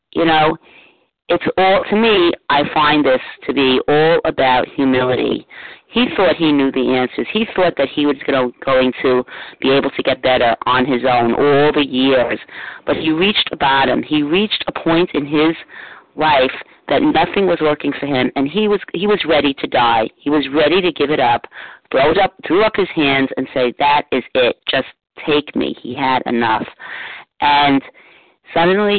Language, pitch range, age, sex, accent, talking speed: English, 130-180 Hz, 40-59, female, American, 185 wpm